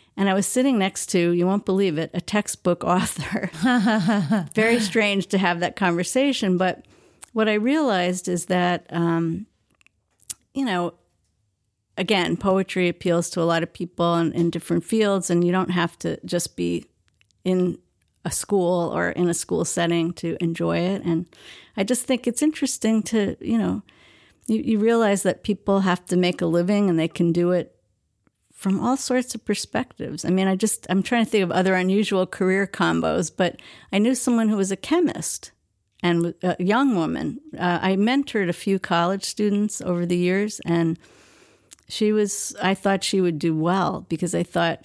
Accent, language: American, English